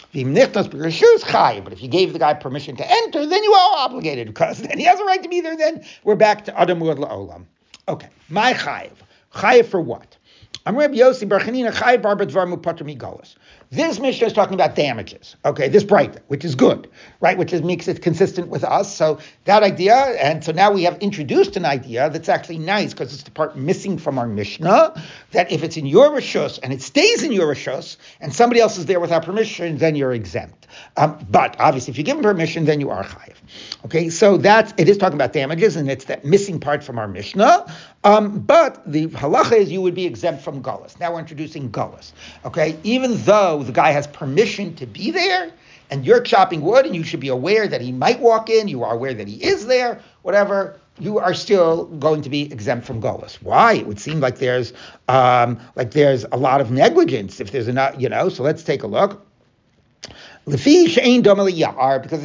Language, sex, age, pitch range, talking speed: English, male, 60-79, 145-215 Hz, 205 wpm